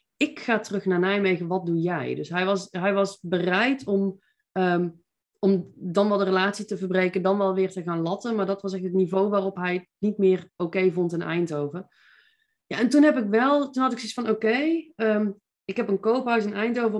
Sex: female